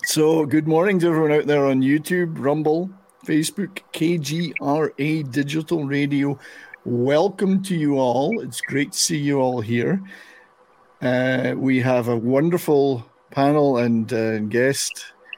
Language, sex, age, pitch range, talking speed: English, male, 50-69, 125-165 Hz, 135 wpm